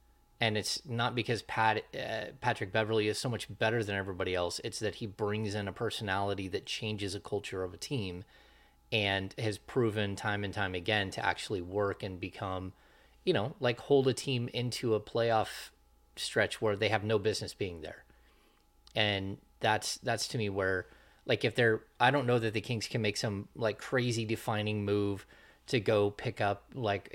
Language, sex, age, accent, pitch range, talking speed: English, male, 30-49, American, 100-120 Hz, 190 wpm